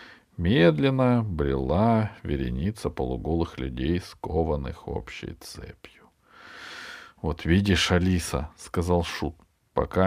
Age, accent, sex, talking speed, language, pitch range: 40-59, native, male, 85 wpm, Russian, 85-120 Hz